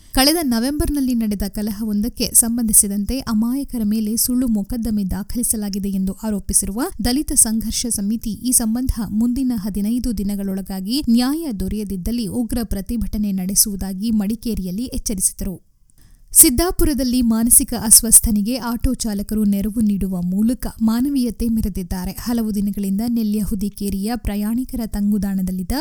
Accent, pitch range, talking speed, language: native, 210-255 Hz, 100 wpm, Kannada